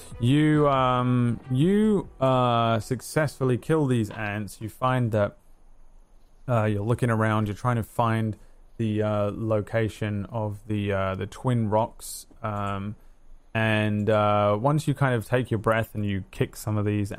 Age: 20-39